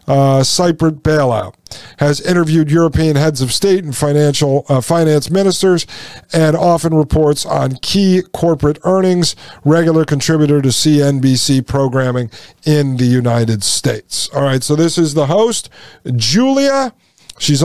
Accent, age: American, 50-69